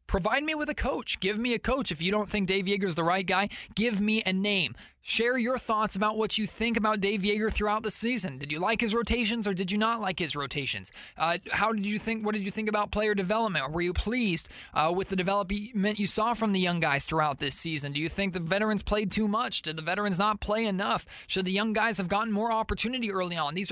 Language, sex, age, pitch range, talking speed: English, male, 20-39, 170-210 Hz, 255 wpm